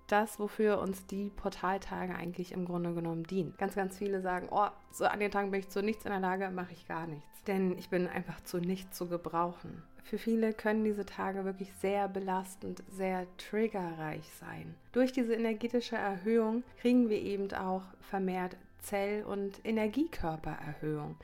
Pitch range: 180-225 Hz